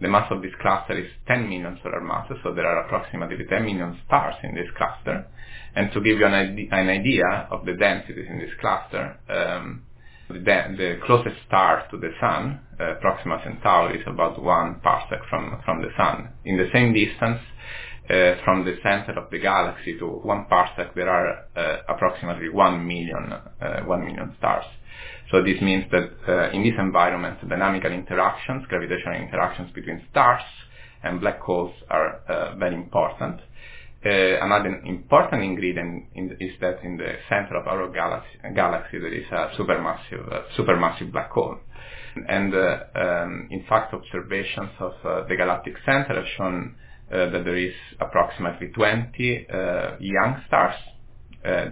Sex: male